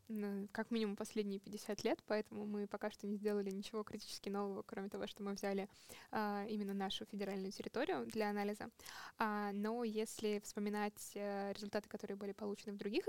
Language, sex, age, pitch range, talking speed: Russian, female, 10-29, 200-220 Hz, 155 wpm